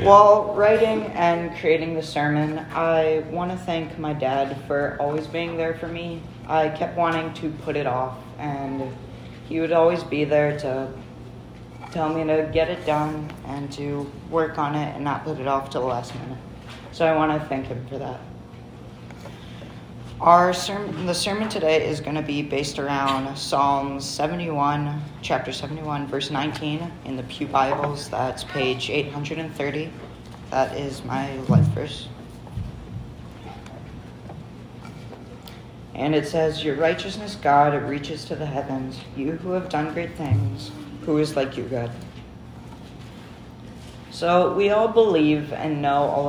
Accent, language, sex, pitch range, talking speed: American, English, female, 135-160 Hz, 150 wpm